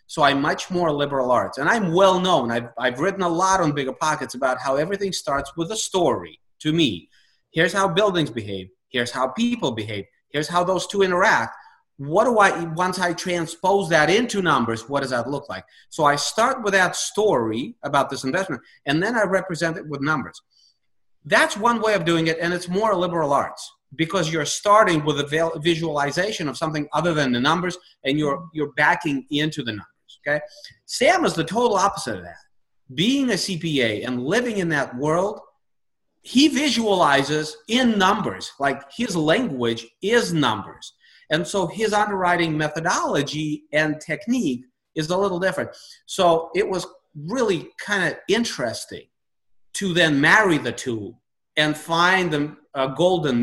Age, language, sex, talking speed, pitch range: 30-49, English, male, 170 wpm, 145-190 Hz